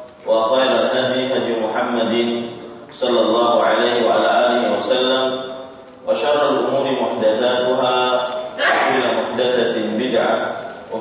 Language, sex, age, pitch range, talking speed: Malay, male, 30-49, 115-125 Hz, 105 wpm